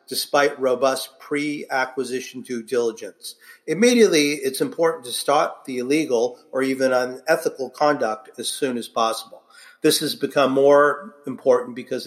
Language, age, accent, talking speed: English, 50-69, American, 130 wpm